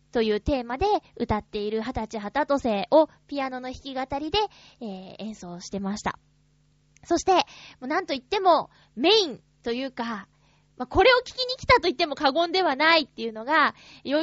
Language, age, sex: Japanese, 20-39, female